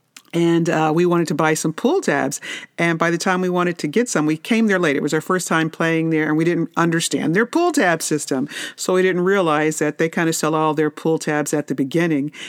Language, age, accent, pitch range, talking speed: English, 50-69, American, 155-175 Hz, 255 wpm